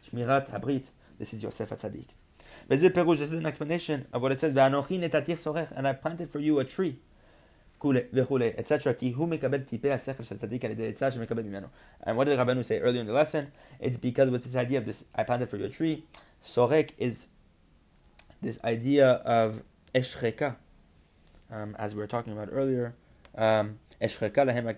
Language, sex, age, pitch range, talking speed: English, male, 20-39, 115-140 Hz, 140 wpm